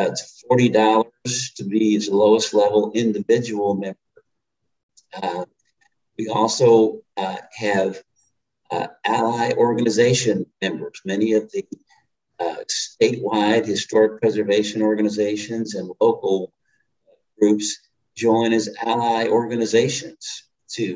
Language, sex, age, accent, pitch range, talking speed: English, male, 50-69, American, 105-120 Hz, 95 wpm